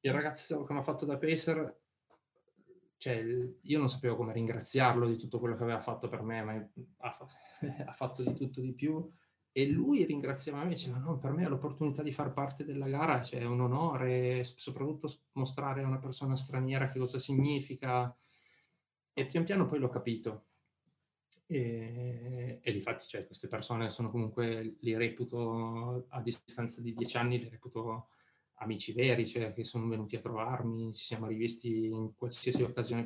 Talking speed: 175 wpm